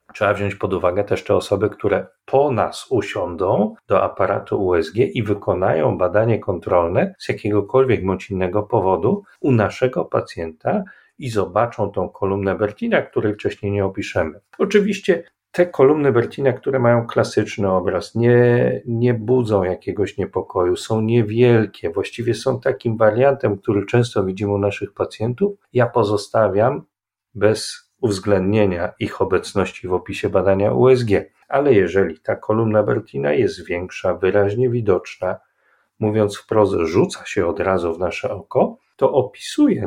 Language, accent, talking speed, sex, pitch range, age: Polish, native, 135 wpm, male, 100-130 Hz, 40-59